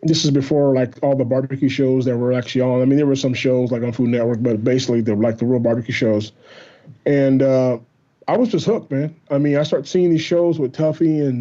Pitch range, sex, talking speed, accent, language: 125-145 Hz, male, 245 wpm, American, English